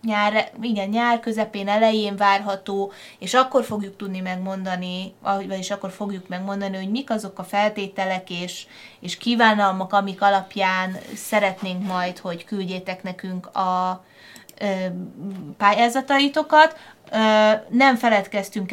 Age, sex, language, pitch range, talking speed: 20-39, female, Hungarian, 190-215 Hz, 105 wpm